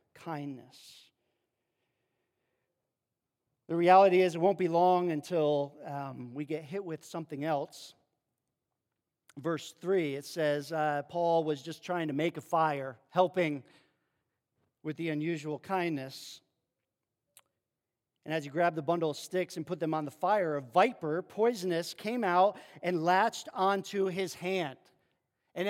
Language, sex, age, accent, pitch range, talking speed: English, male, 40-59, American, 165-235 Hz, 140 wpm